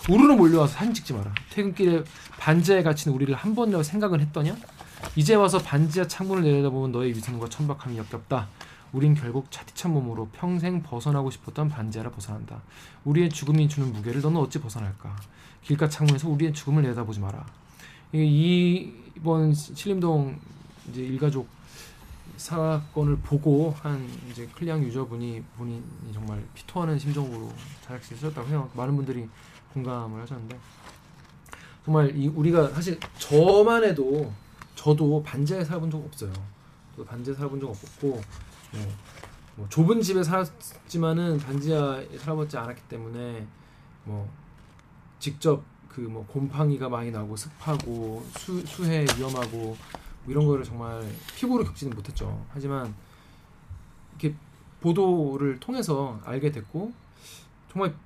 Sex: male